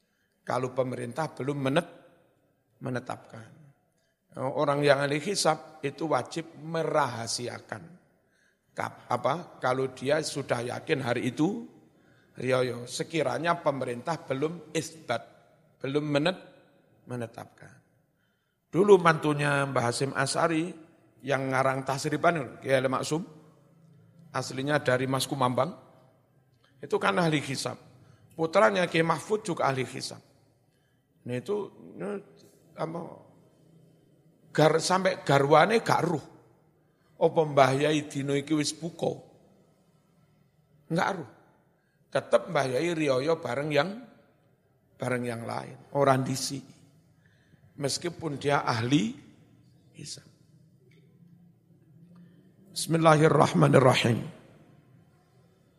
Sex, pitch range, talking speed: male, 135-165 Hz, 85 wpm